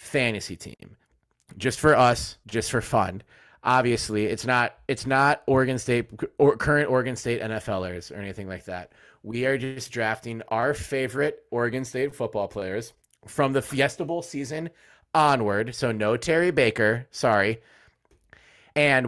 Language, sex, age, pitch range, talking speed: English, male, 30-49, 110-135 Hz, 140 wpm